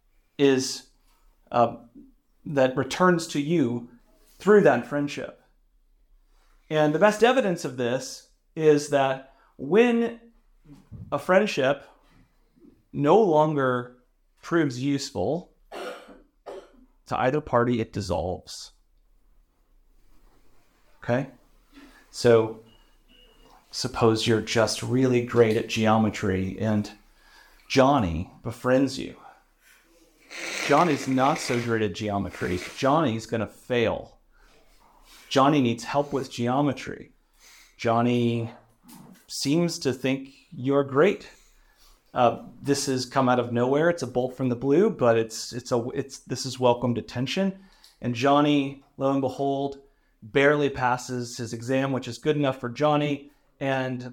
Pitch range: 120-145 Hz